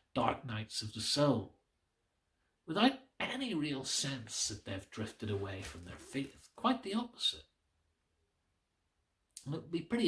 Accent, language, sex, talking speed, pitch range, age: British, English, male, 145 wpm, 100-145 Hz, 50-69